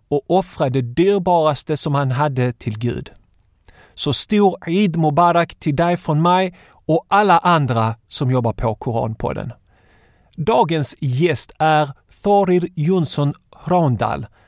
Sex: male